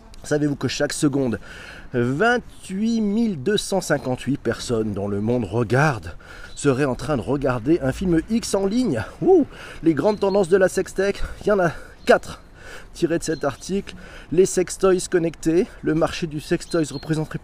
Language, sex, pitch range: French, male, 125-180 Hz